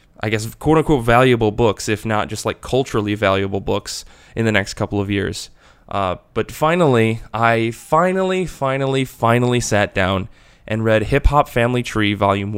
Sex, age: male, 20-39